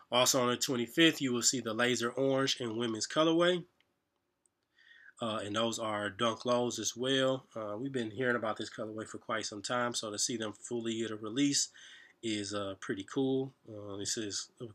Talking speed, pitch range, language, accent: 195 wpm, 110-125 Hz, English, American